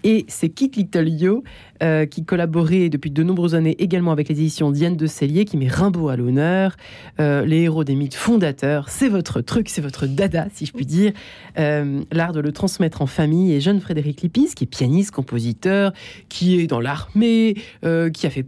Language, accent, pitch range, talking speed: French, French, 150-200 Hz, 200 wpm